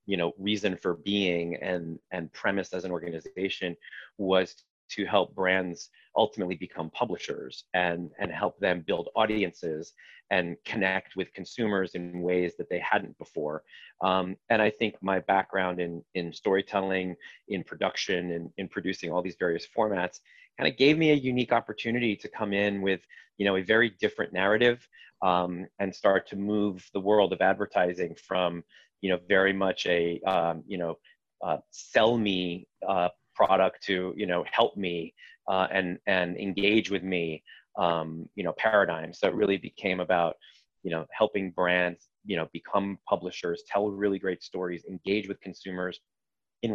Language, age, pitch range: English, 30-49, 90-100 Hz